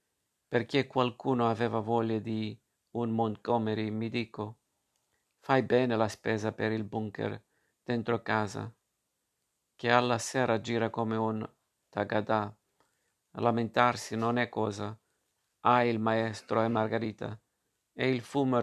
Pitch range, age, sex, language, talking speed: 110-125 Hz, 50-69, male, Italian, 120 wpm